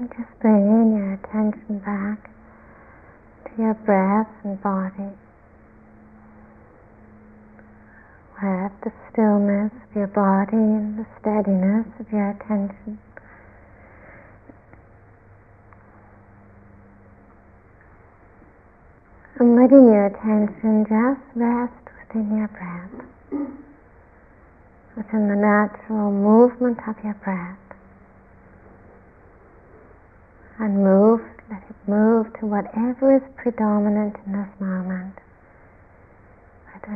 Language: English